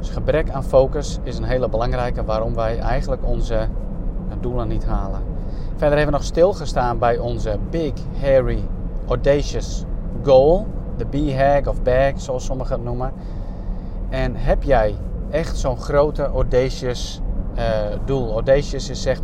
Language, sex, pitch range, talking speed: Dutch, male, 110-130 Hz, 145 wpm